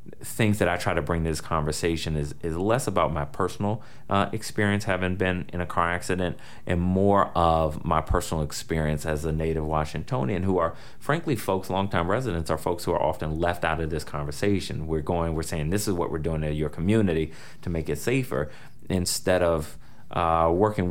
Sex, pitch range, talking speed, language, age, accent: male, 80-100 Hz, 200 wpm, English, 30-49, American